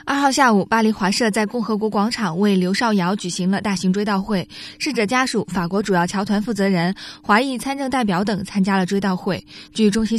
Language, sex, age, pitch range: Chinese, female, 20-39, 195-240 Hz